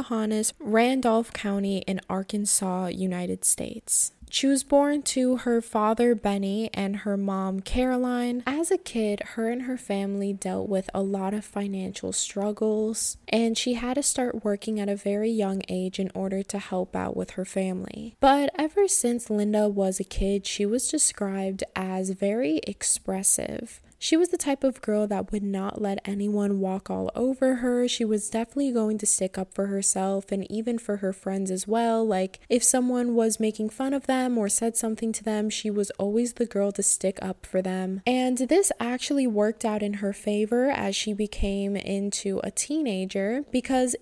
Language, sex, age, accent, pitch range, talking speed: English, female, 10-29, American, 200-245 Hz, 180 wpm